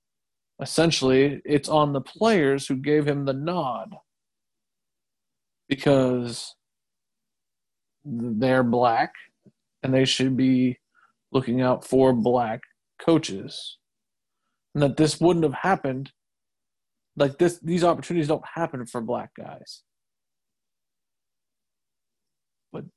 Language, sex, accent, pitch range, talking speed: English, male, American, 130-165 Hz, 100 wpm